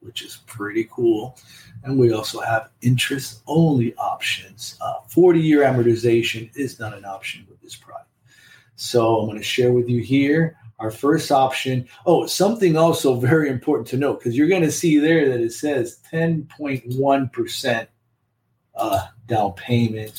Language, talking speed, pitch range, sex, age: English, 150 wpm, 115-150 Hz, male, 40-59